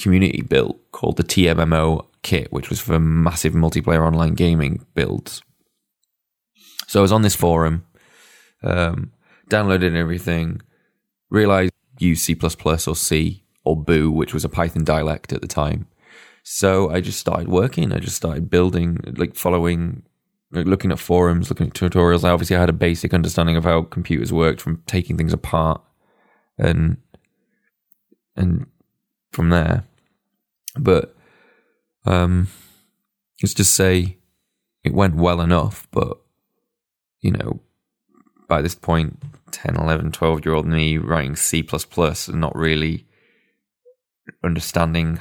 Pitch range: 80-90 Hz